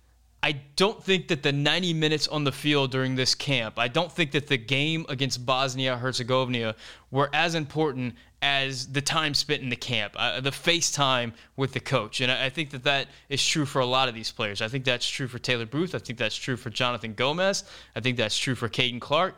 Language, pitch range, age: English, 125-150 Hz, 20-39